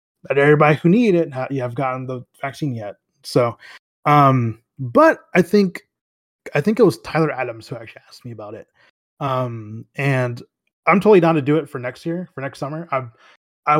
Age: 20-39